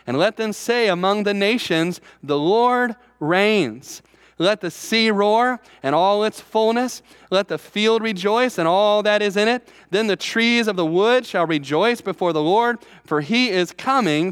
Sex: male